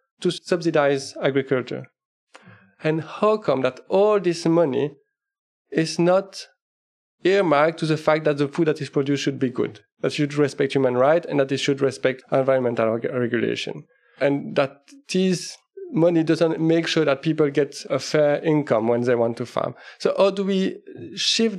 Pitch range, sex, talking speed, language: 145-185 Hz, male, 165 wpm, English